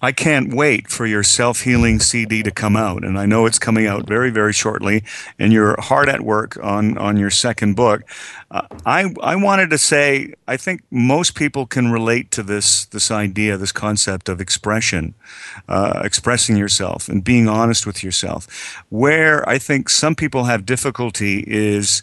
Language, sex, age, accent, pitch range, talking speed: English, male, 50-69, American, 100-120 Hz, 175 wpm